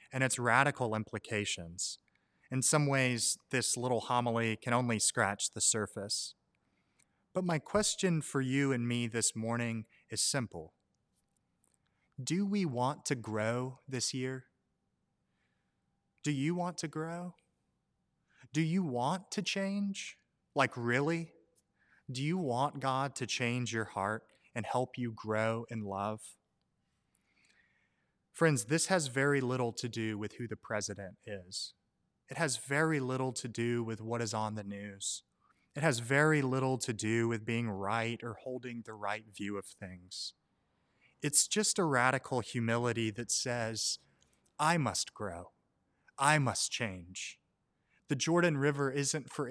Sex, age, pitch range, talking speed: male, 30-49, 110-145 Hz, 140 wpm